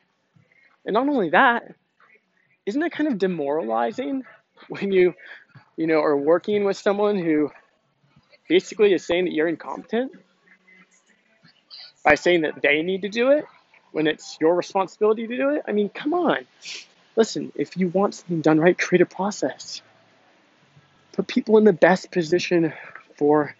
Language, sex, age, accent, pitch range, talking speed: English, male, 20-39, American, 150-195 Hz, 155 wpm